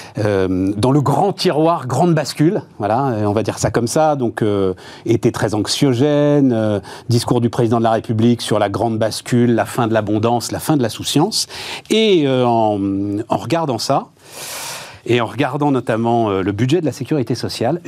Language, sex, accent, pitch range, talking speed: French, male, French, 120-160 Hz, 190 wpm